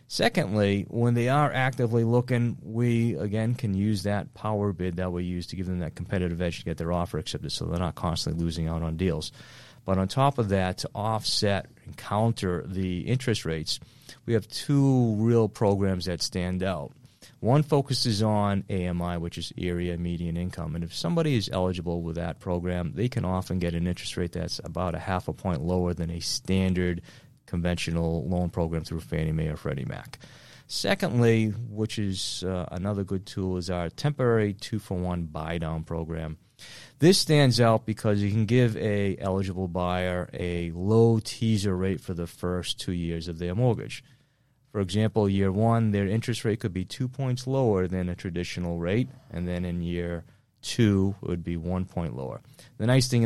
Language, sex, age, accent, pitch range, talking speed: English, male, 30-49, American, 85-115 Hz, 185 wpm